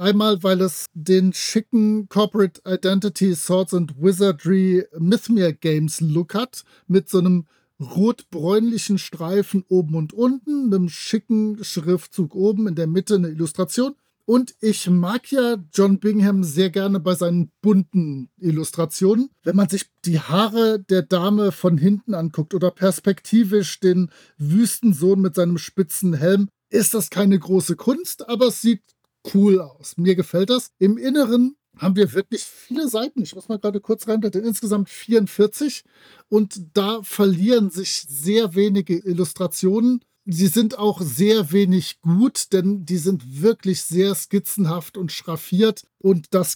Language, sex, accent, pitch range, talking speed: German, male, German, 175-215 Hz, 145 wpm